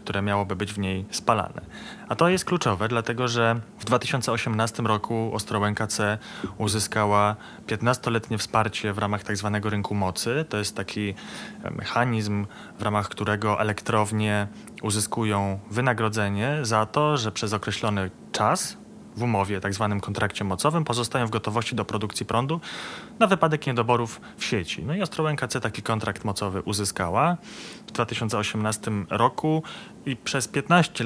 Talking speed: 140 wpm